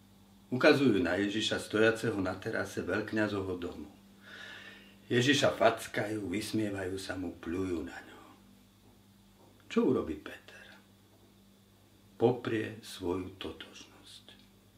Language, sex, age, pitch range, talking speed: Slovak, male, 60-79, 100-115 Hz, 90 wpm